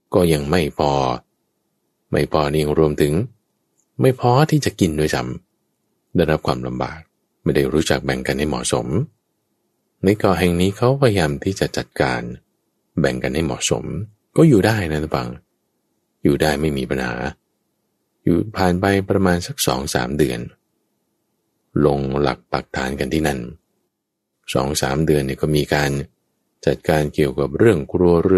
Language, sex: English, male